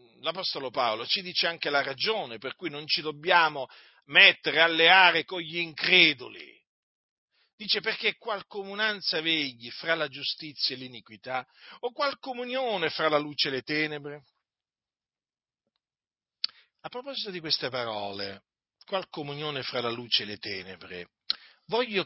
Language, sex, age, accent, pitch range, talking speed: Italian, male, 50-69, native, 130-205 Hz, 140 wpm